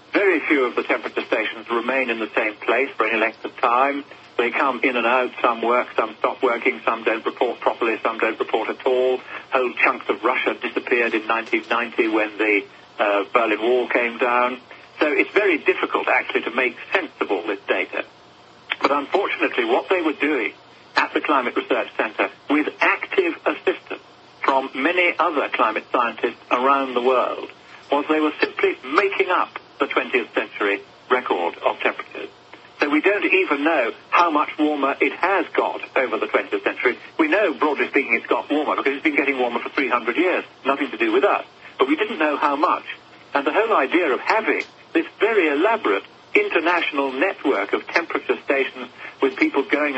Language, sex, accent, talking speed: English, male, British, 185 wpm